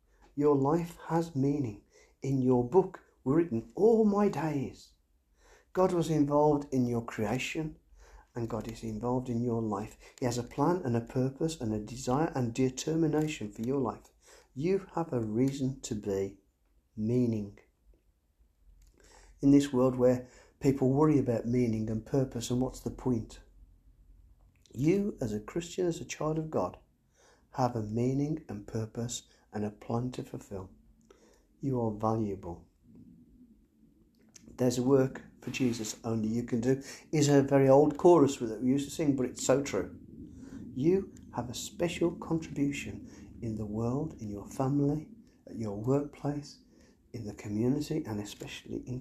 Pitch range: 110-145 Hz